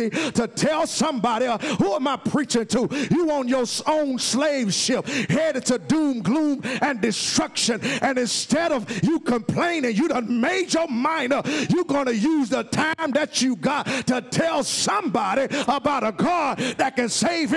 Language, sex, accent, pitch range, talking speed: English, male, American, 255-345 Hz, 165 wpm